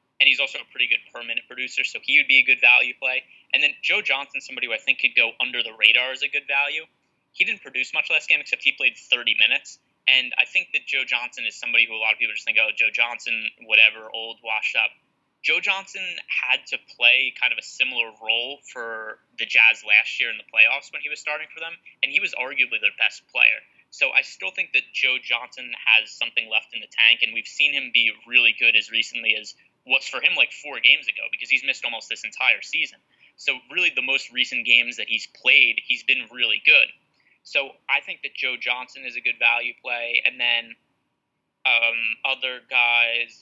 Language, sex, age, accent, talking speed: English, male, 20-39, American, 225 wpm